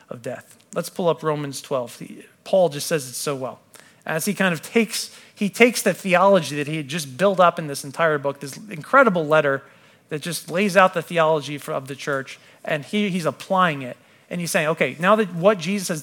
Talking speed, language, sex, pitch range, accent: 220 wpm, English, male, 140-180 Hz, American